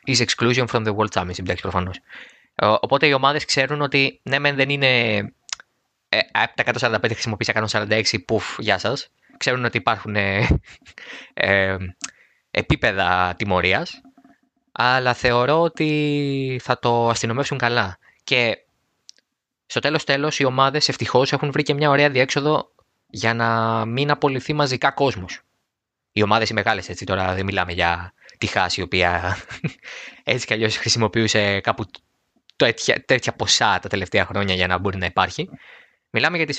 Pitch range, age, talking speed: 95-140 Hz, 20-39, 145 wpm